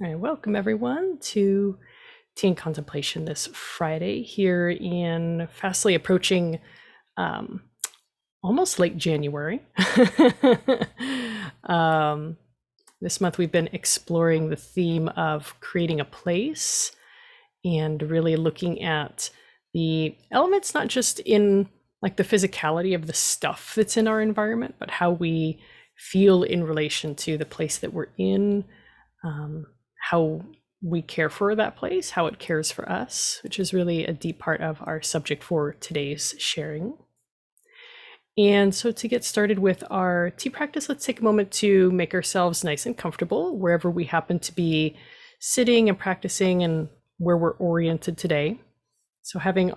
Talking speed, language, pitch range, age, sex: 140 wpm, English, 160-215 Hz, 30-49, female